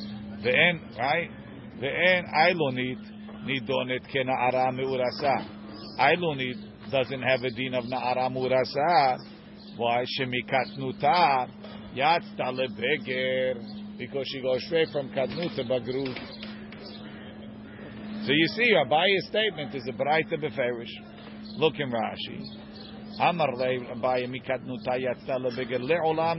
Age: 50-69